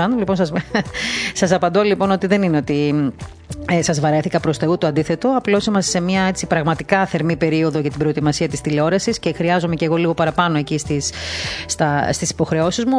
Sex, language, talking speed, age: female, Greek, 180 wpm, 30-49